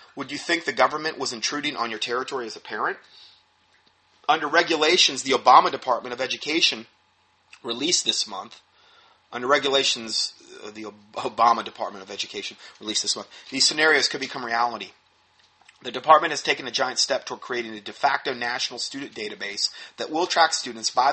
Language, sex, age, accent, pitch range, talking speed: English, male, 30-49, American, 115-150 Hz, 165 wpm